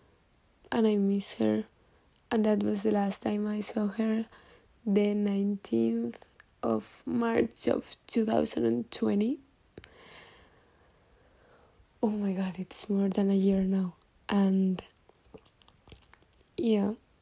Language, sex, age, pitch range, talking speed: Spanish, female, 20-39, 200-225 Hz, 105 wpm